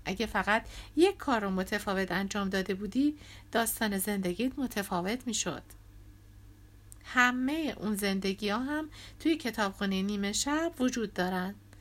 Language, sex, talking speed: Persian, female, 115 wpm